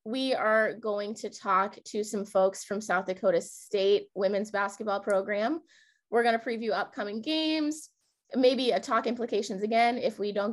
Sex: female